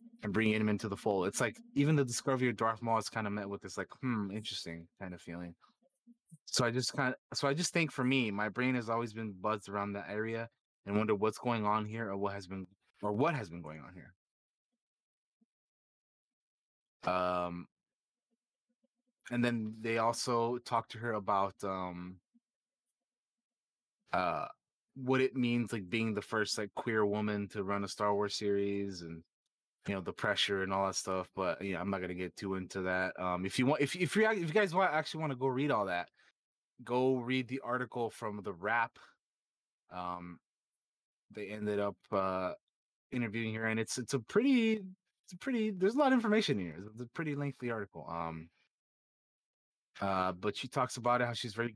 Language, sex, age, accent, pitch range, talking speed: English, male, 20-39, American, 95-130 Hz, 200 wpm